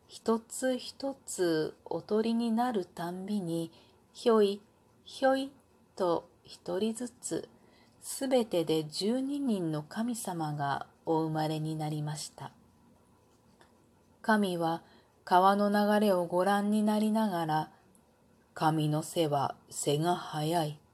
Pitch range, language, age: 165-230 Hz, Japanese, 40-59